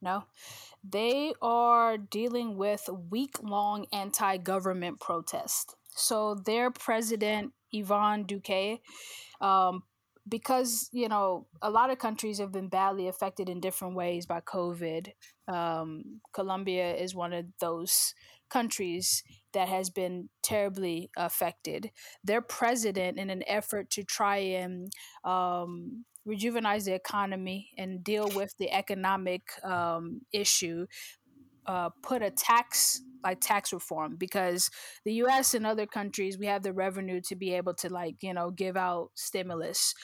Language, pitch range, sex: English, 185-215 Hz, female